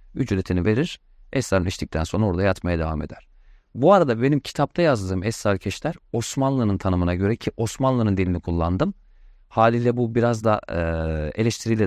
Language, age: Turkish, 40-59